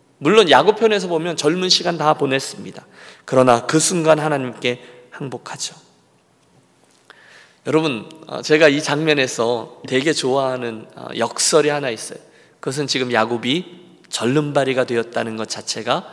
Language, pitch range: Korean, 125-180 Hz